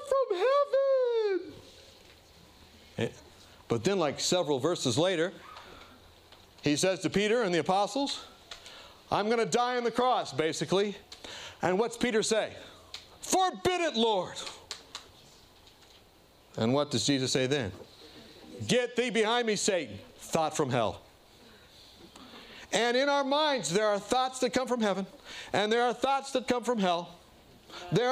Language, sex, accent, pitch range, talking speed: English, male, American, 190-260 Hz, 135 wpm